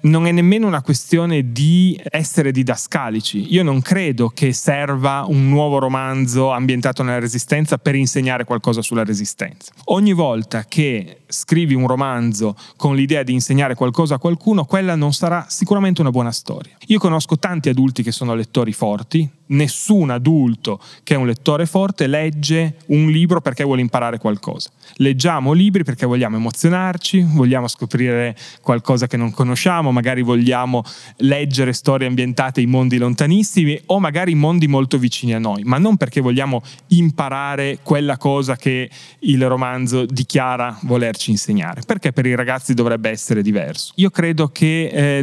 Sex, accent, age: male, native, 30-49